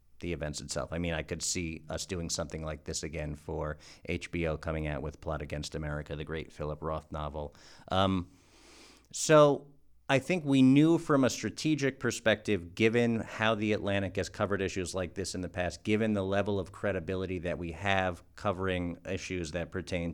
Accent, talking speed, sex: American, 180 wpm, male